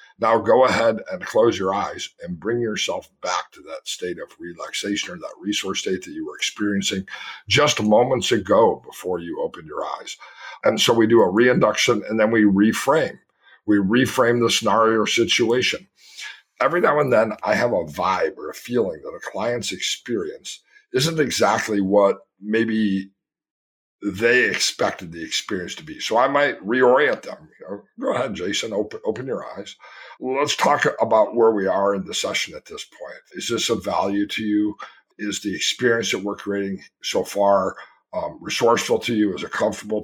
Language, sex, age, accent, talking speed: English, male, 50-69, American, 175 wpm